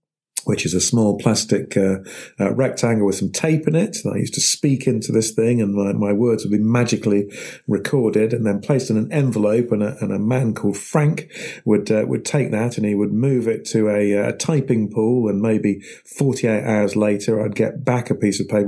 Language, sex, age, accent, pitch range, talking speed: English, male, 40-59, British, 105-135 Hz, 220 wpm